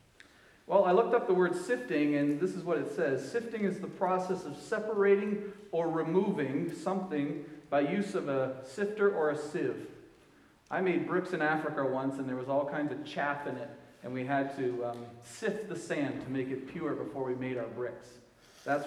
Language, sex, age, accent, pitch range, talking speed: English, male, 40-59, American, 135-190 Hz, 200 wpm